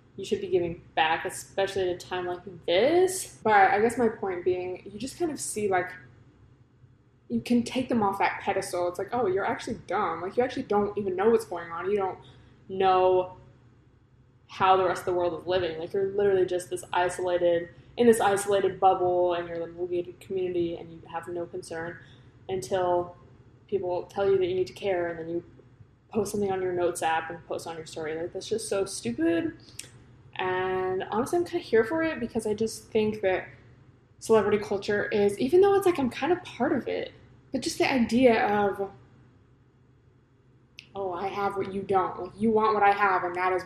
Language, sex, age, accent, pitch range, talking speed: English, female, 20-39, American, 130-210 Hz, 205 wpm